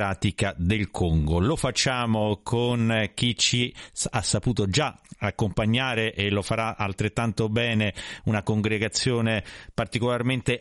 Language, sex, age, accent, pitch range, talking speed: Italian, male, 40-59, native, 105-130 Hz, 105 wpm